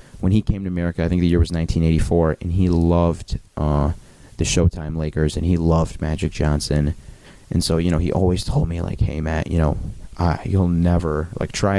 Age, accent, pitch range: 30-49, American, 80-90 Hz